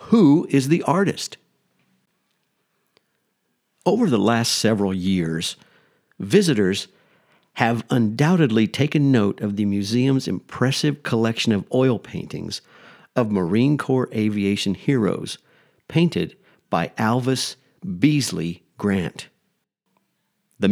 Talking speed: 95 wpm